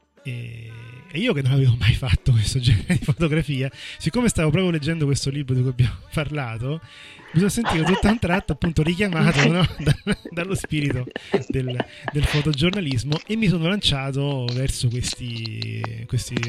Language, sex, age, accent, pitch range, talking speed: Italian, male, 30-49, native, 120-155 Hz, 155 wpm